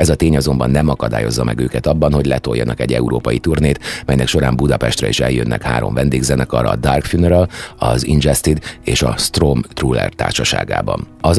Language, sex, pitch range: Hungarian, male, 65-80 Hz